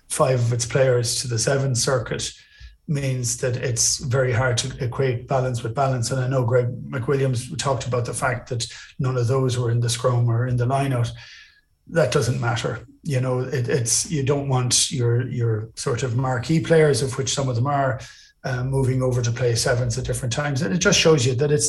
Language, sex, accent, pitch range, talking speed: English, male, Irish, 125-150 Hz, 215 wpm